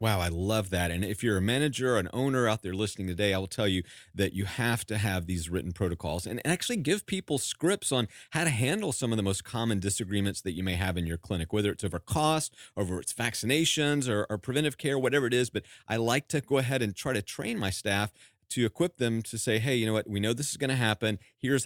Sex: male